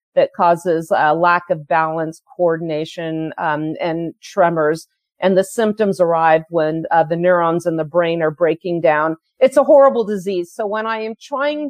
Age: 40-59